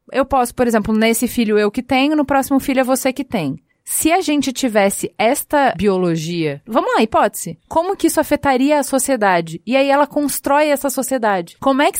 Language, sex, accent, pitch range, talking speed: Portuguese, female, Brazilian, 205-270 Hz, 200 wpm